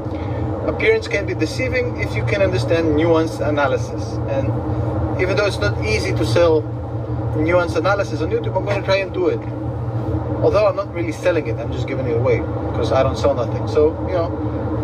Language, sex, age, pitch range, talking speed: English, male, 30-49, 105-140 Hz, 195 wpm